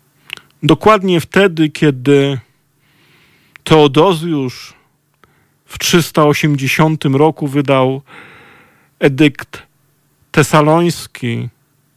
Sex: male